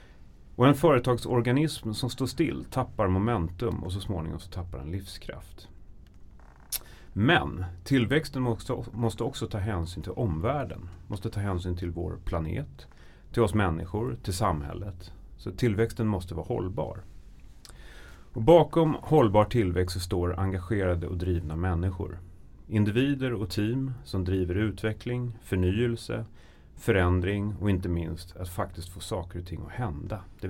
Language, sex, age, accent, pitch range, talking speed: Swedish, male, 30-49, native, 90-115 Hz, 135 wpm